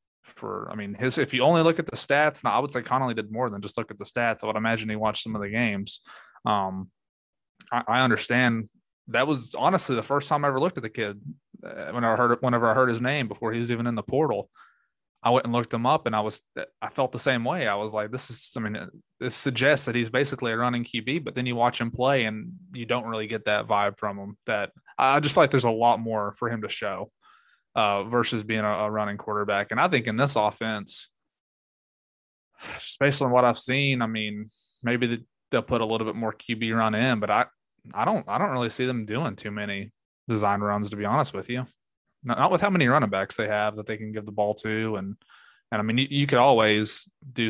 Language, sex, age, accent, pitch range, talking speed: English, male, 20-39, American, 105-125 Hz, 250 wpm